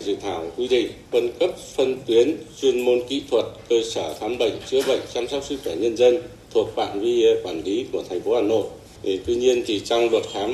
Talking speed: 230 wpm